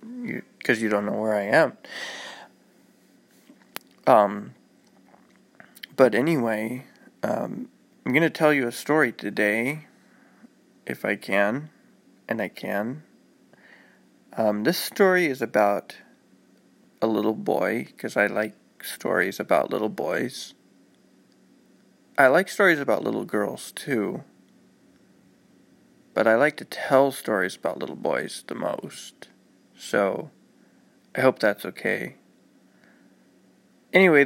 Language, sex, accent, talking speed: English, male, American, 115 wpm